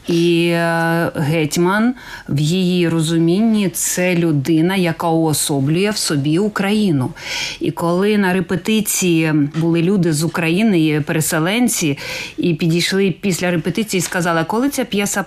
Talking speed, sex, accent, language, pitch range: 120 wpm, female, native, Ukrainian, 160-190 Hz